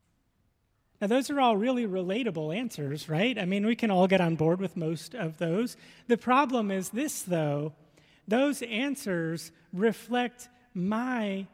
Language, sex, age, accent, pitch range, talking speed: English, male, 30-49, American, 150-200 Hz, 150 wpm